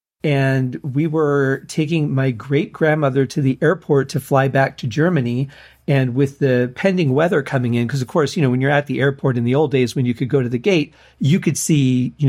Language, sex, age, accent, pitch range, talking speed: English, male, 40-59, American, 130-150 Hz, 230 wpm